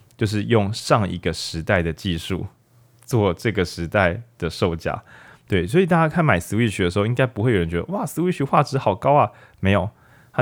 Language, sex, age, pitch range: Chinese, male, 20-39, 95-130 Hz